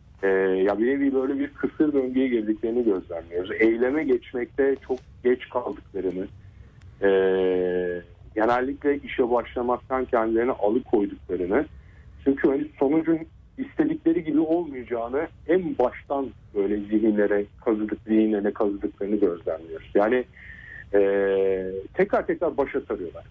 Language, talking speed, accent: Turkish, 105 wpm, native